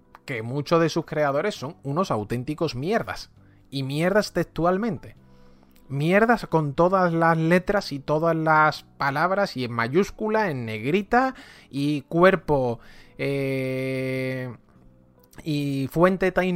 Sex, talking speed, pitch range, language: male, 115 wpm, 120-180 Hz, English